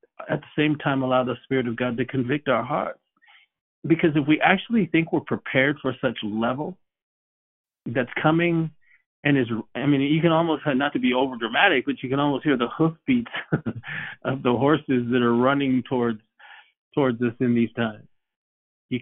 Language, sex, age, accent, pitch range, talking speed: English, male, 40-59, American, 115-145 Hz, 180 wpm